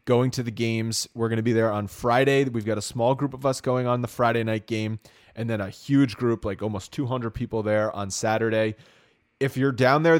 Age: 30-49